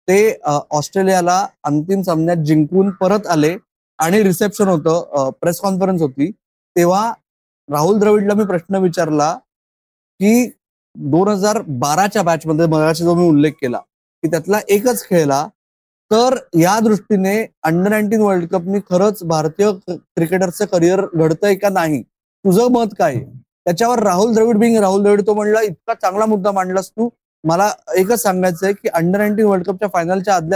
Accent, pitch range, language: native, 170-215 Hz, Marathi